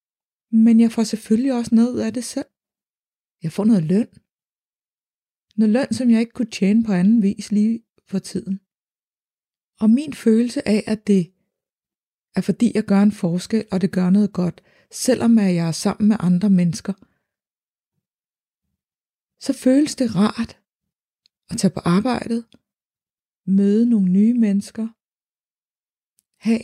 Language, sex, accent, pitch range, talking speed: Danish, female, native, 195-230 Hz, 140 wpm